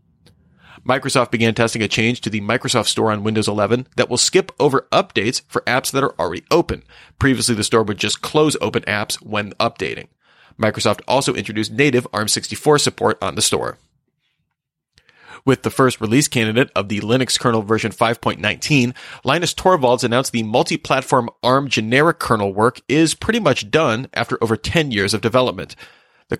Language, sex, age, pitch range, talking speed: English, male, 30-49, 110-135 Hz, 165 wpm